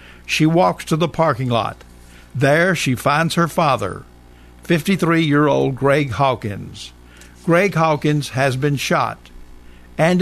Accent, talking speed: American, 115 wpm